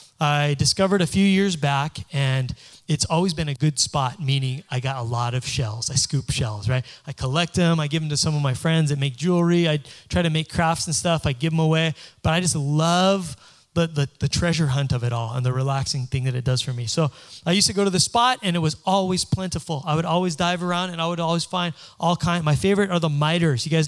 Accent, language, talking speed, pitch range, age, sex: American, English, 255 wpm, 135-175 Hz, 20-39, male